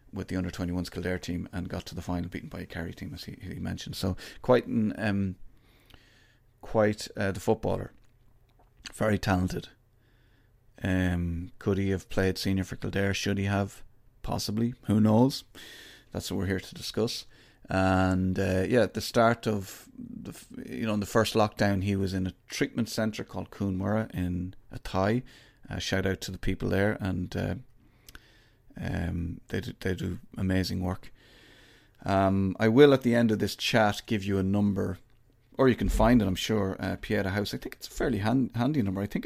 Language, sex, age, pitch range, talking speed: English, male, 30-49, 95-120 Hz, 190 wpm